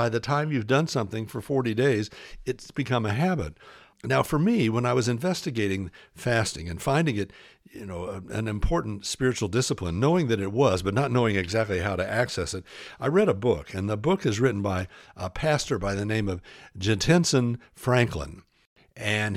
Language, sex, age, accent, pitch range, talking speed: English, male, 60-79, American, 105-150 Hz, 190 wpm